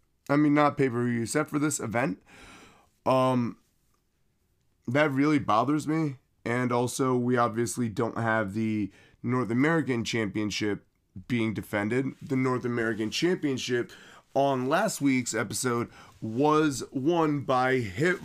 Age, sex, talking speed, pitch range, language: 30-49, male, 120 wpm, 125-155 Hz, English